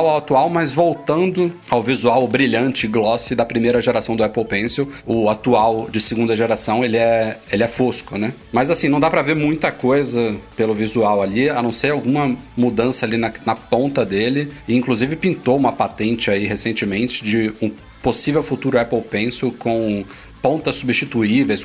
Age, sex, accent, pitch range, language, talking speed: 40-59, male, Brazilian, 110-130 Hz, Portuguese, 170 wpm